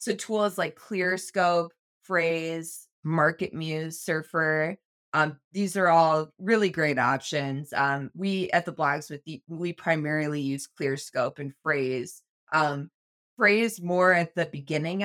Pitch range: 145-180 Hz